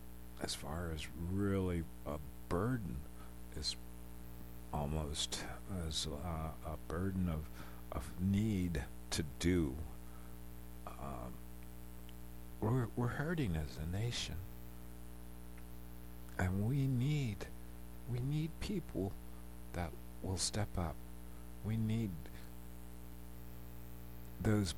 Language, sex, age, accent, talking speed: English, male, 50-69, American, 90 wpm